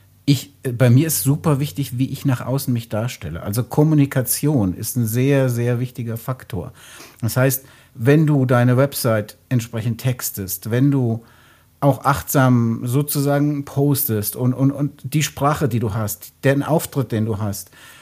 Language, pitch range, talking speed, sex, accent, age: German, 120-145 Hz, 155 wpm, male, German, 60-79